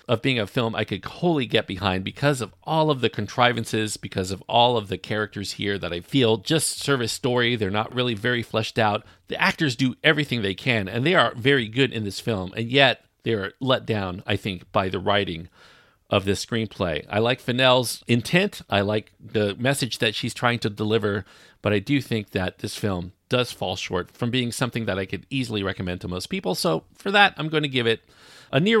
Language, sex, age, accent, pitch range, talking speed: English, male, 40-59, American, 95-125 Hz, 225 wpm